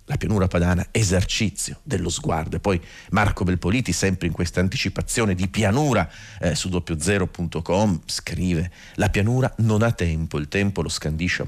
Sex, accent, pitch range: male, native, 85-110 Hz